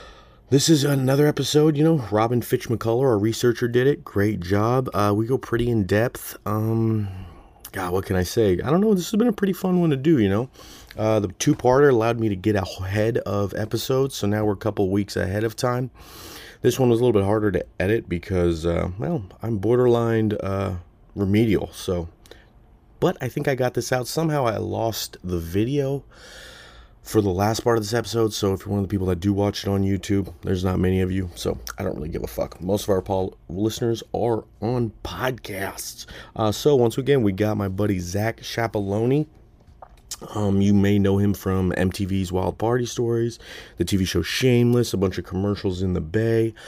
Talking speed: 200 wpm